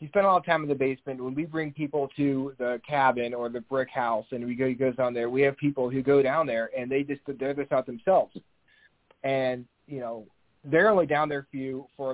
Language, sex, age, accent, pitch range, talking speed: English, male, 30-49, American, 125-145 Hz, 245 wpm